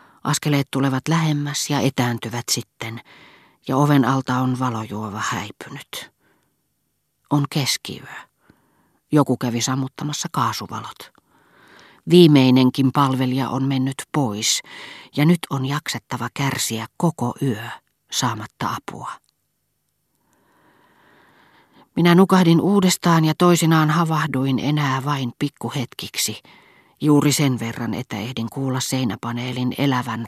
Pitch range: 120-145 Hz